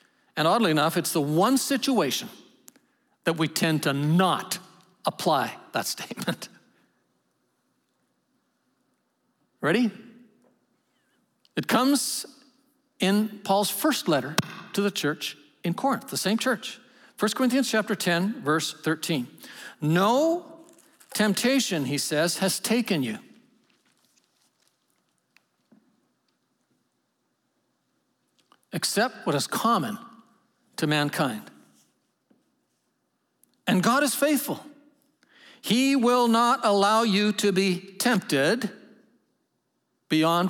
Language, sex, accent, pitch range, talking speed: English, male, American, 185-245 Hz, 90 wpm